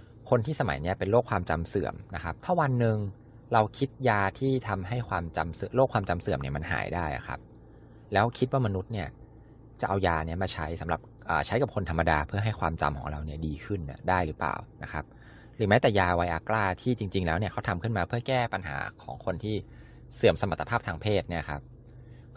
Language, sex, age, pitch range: Thai, male, 20-39, 85-115 Hz